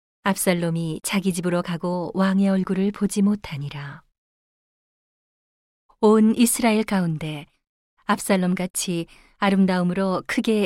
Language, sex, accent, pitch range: Korean, female, native, 165-205 Hz